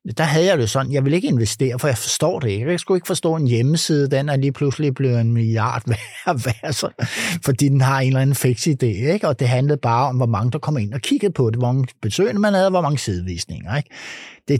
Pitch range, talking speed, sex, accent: 120-165 Hz, 260 wpm, male, native